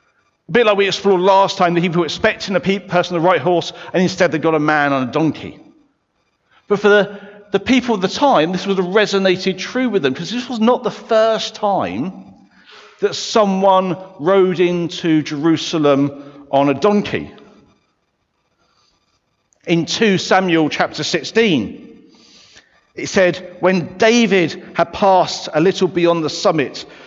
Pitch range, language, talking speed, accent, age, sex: 155-200 Hz, English, 155 wpm, British, 50-69, male